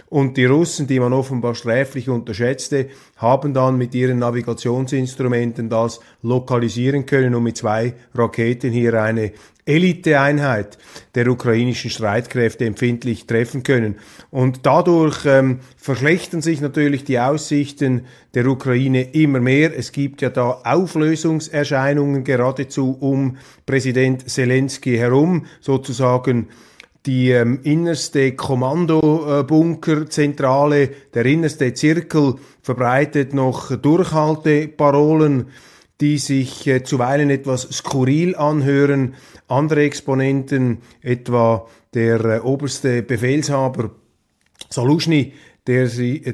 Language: German